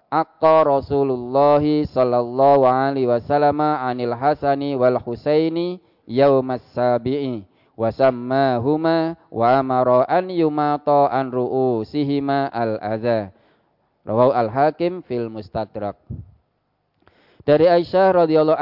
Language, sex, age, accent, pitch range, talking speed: Indonesian, male, 20-39, native, 115-145 Hz, 90 wpm